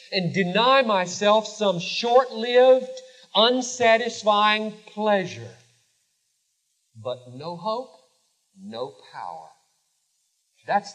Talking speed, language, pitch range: 70 wpm, Hindi, 170-255 Hz